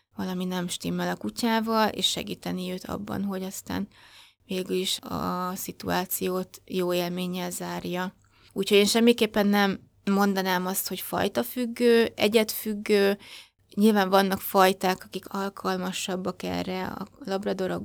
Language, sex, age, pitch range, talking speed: Hungarian, female, 20-39, 180-205 Hz, 120 wpm